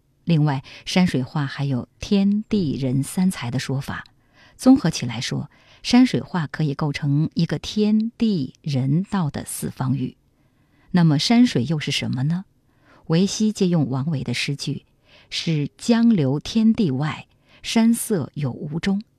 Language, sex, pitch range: Chinese, female, 135-205 Hz